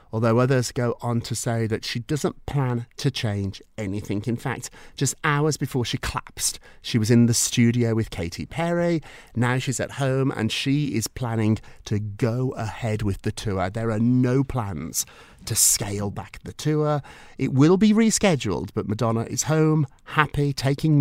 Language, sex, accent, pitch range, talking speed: English, male, British, 115-165 Hz, 175 wpm